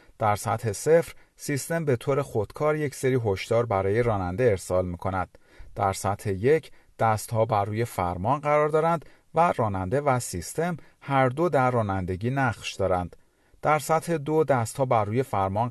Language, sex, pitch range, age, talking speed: Persian, male, 100-140 Hz, 40-59, 155 wpm